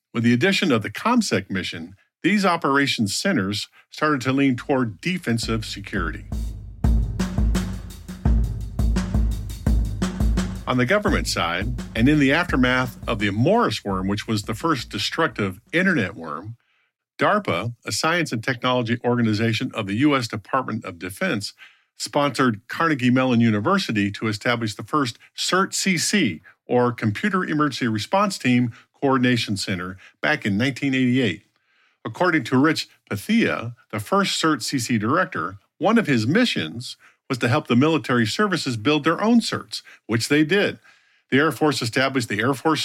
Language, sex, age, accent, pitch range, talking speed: English, male, 50-69, American, 110-150 Hz, 140 wpm